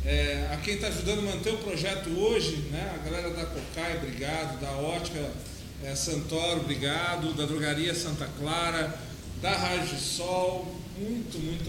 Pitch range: 140-175 Hz